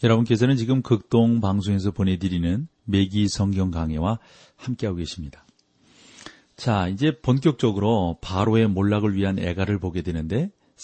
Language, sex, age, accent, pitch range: Korean, male, 40-59, native, 95-125 Hz